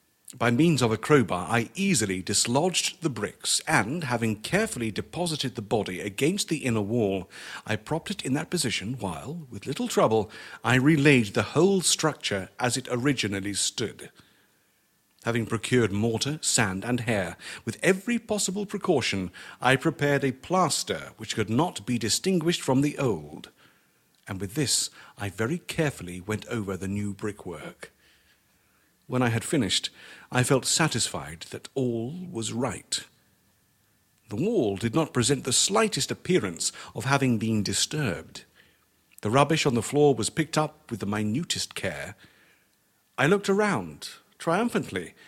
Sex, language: male, English